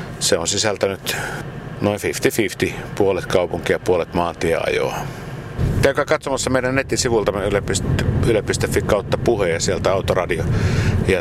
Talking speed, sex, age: 130 wpm, male, 60-79